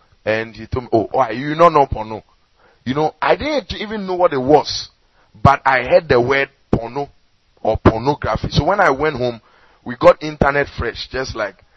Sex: male